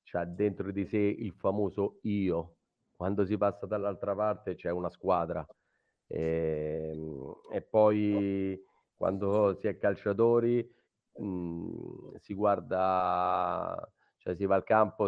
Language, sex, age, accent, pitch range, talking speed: Italian, male, 30-49, native, 95-105 Hz, 120 wpm